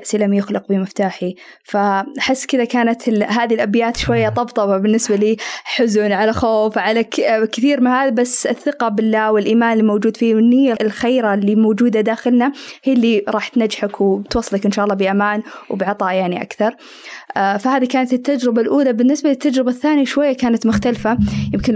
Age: 20-39